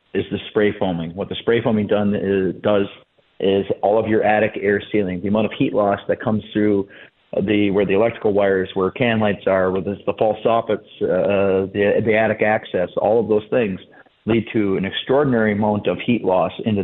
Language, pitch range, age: English, 100-115 Hz, 40-59